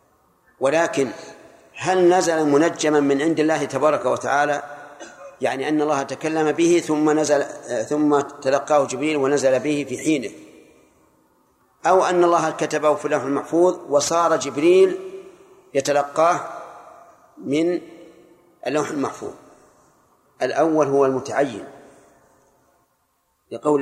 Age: 50-69